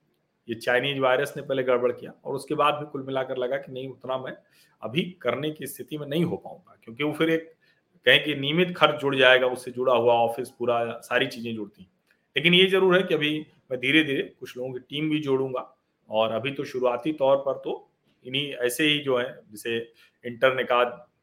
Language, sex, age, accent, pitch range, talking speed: Hindi, male, 40-59, native, 125-160 Hz, 205 wpm